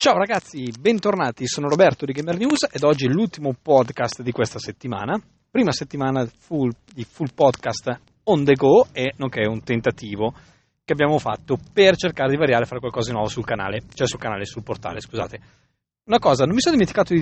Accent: Italian